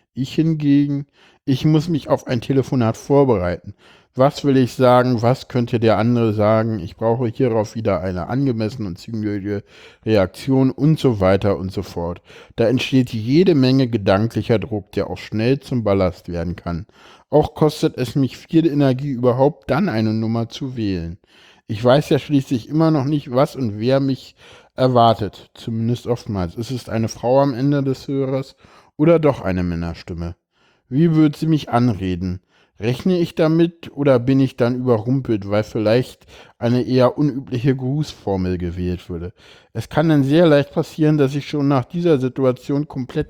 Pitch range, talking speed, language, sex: 105-140 Hz, 165 wpm, German, male